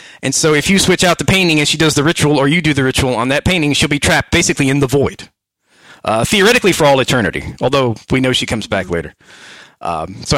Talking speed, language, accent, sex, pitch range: 245 wpm, English, American, male, 130-165 Hz